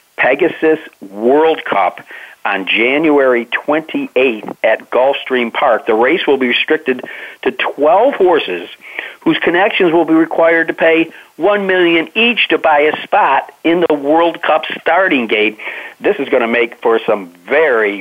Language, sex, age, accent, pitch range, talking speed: English, male, 50-69, American, 115-145 Hz, 150 wpm